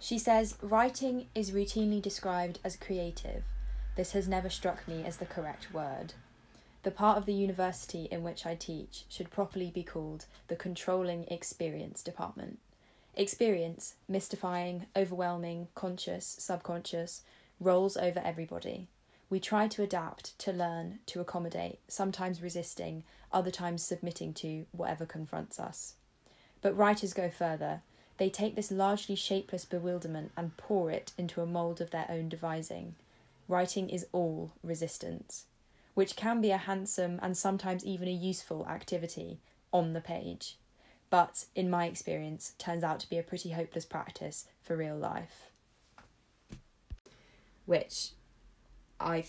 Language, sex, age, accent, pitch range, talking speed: English, female, 20-39, British, 170-195 Hz, 140 wpm